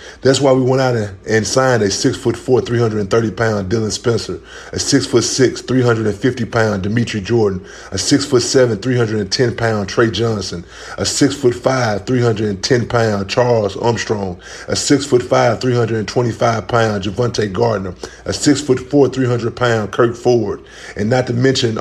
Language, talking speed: English, 210 wpm